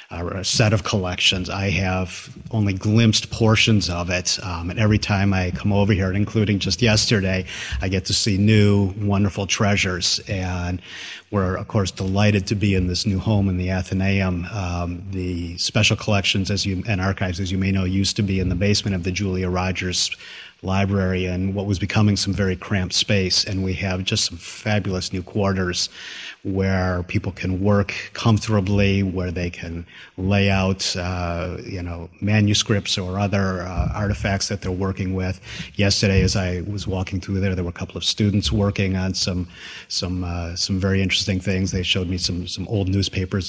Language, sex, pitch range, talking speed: English, male, 90-100 Hz, 180 wpm